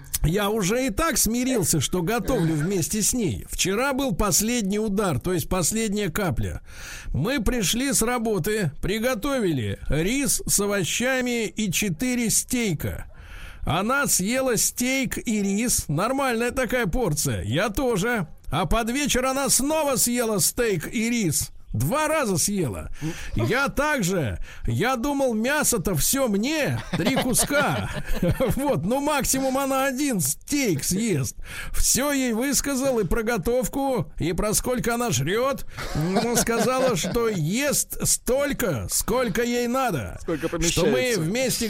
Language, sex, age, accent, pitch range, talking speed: Russian, male, 50-69, native, 165-250 Hz, 130 wpm